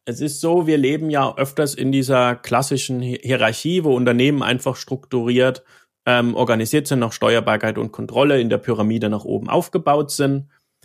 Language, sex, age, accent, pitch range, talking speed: German, male, 30-49, German, 115-145 Hz, 160 wpm